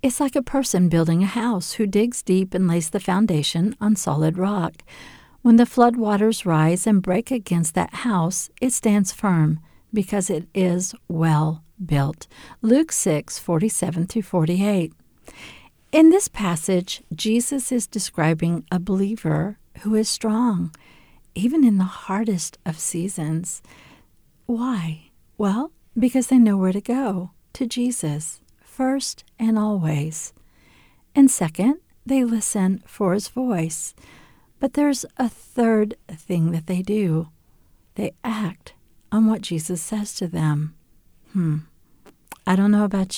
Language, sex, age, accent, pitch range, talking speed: English, female, 50-69, American, 175-230 Hz, 135 wpm